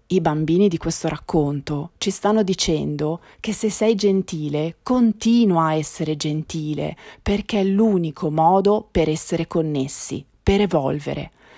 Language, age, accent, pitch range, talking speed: Italian, 30-49, native, 150-190 Hz, 130 wpm